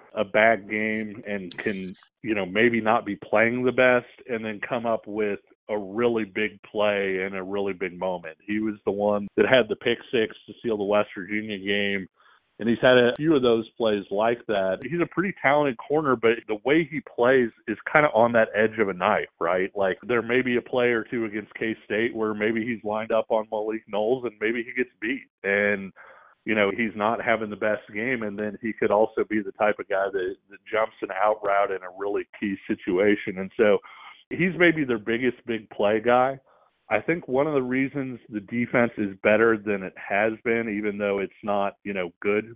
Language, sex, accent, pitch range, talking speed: English, male, American, 105-125 Hz, 220 wpm